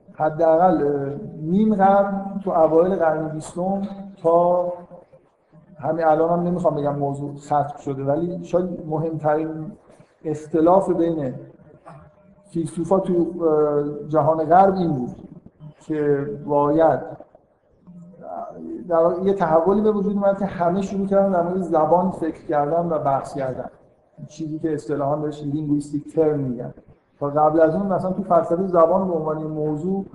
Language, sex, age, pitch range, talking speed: Persian, male, 50-69, 155-185 Hz, 125 wpm